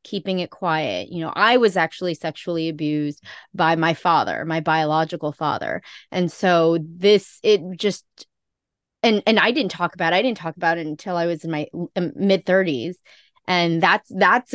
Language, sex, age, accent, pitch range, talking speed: English, female, 20-39, American, 165-195 Hz, 170 wpm